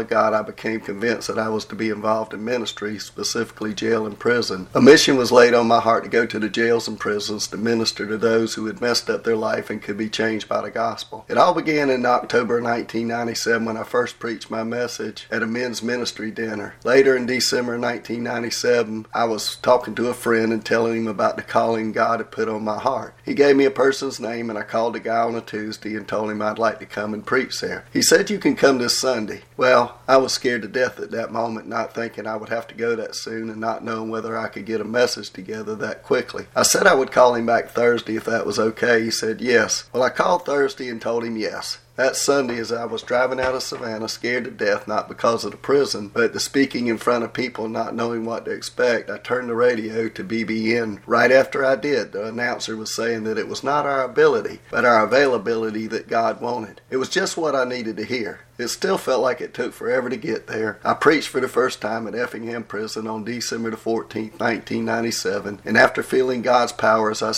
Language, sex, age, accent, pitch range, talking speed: English, male, 40-59, American, 110-120 Hz, 235 wpm